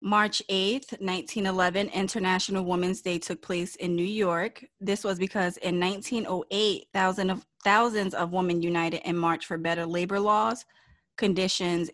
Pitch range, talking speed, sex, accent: 170-195 Hz, 145 wpm, female, American